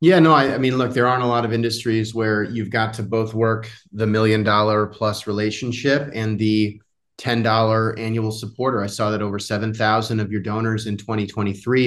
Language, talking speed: English, 180 wpm